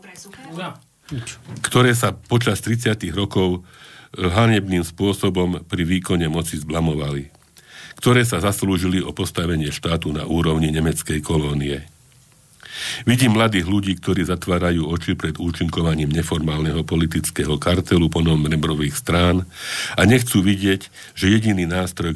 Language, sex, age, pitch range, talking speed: Slovak, male, 50-69, 80-100 Hz, 110 wpm